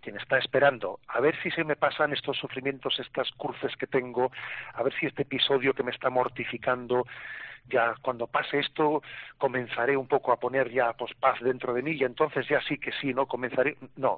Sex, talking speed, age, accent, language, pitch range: male, 200 wpm, 40-59, Spanish, Spanish, 125-155 Hz